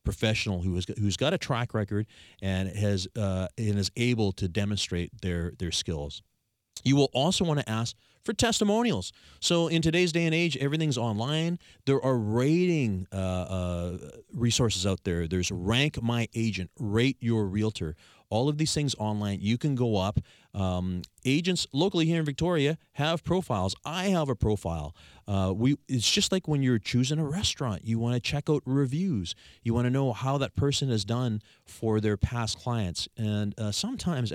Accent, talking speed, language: American, 180 wpm, English